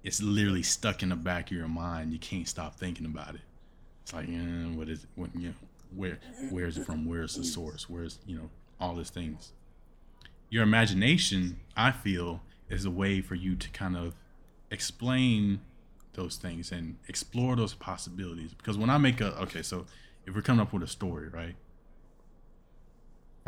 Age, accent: 20-39, American